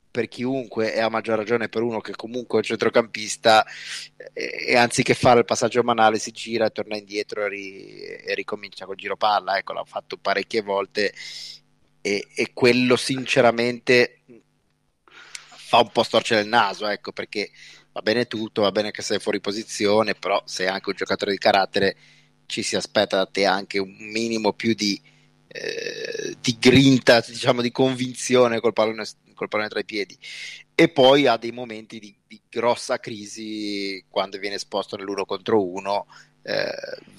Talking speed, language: 165 wpm, Italian